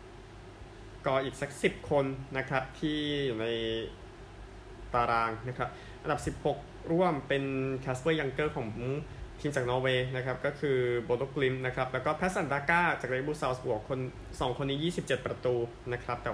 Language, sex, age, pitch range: Thai, male, 20-39, 115-145 Hz